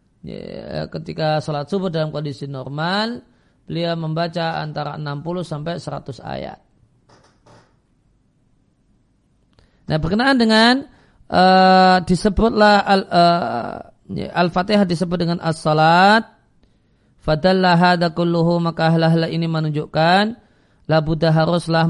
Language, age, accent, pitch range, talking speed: Indonesian, 40-59, native, 155-185 Hz, 85 wpm